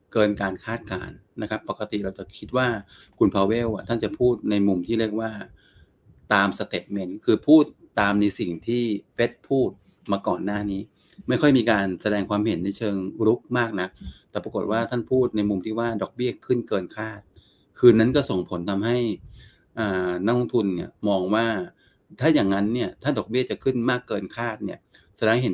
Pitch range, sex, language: 100-120 Hz, male, Thai